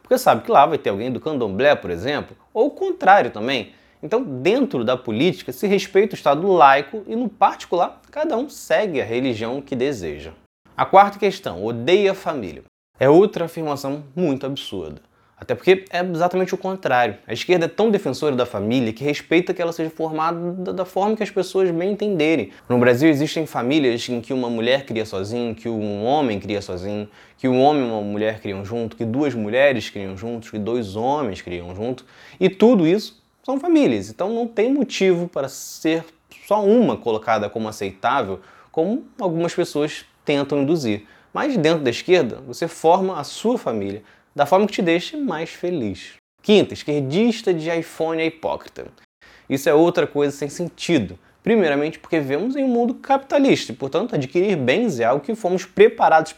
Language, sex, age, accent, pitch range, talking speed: Portuguese, male, 20-39, Brazilian, 125-195 Hz, 180 wpm